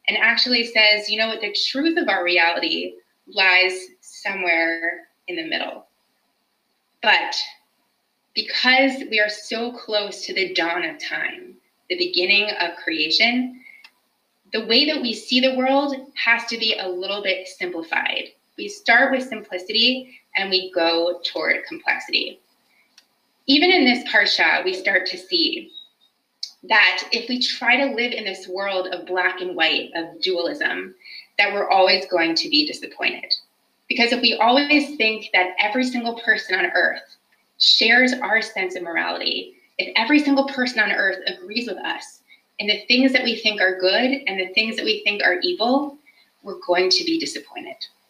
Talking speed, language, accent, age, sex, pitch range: 160 wpm, English, American, 20-39, female, 185-265 Hz